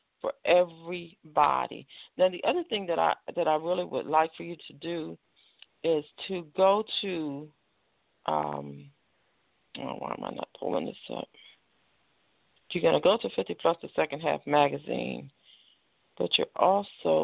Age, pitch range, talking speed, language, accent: 50-69, 145-180 Hz, 150 wpm, English, American